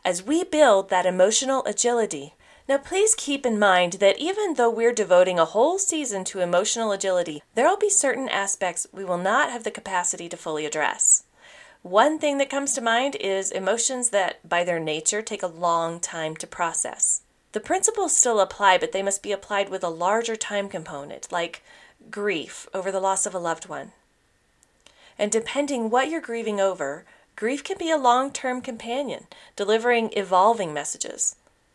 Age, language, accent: 30-49, English, American